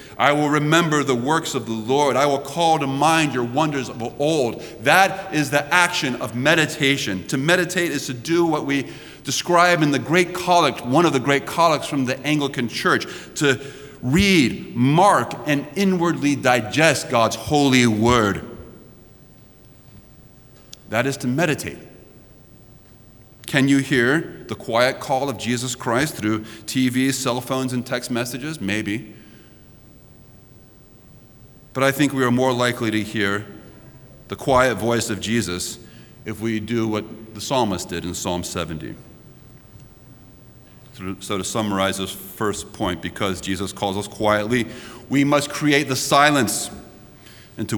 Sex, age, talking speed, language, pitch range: male, 30-49, 145 wpm, English, 115-150 Hz